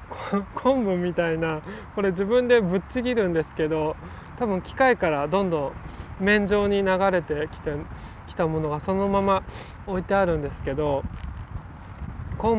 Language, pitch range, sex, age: Japanese, 140-195 Hz, male, 20-39